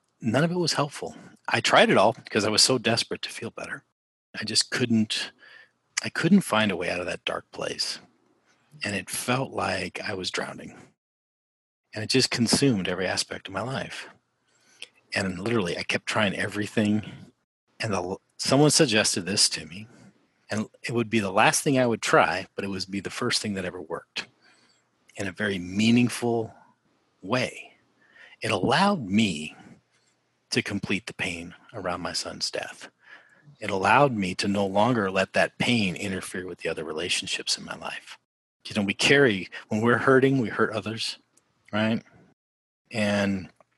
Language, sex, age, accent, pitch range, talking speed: English, male, 40-59, American, 95-120 Hz, 170 wpm